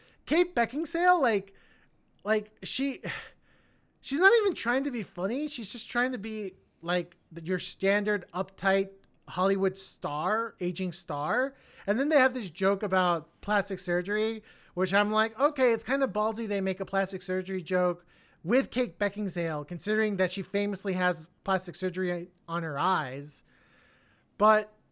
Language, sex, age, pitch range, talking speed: English, male, 20-39, 170-225 Hz, 150 wpm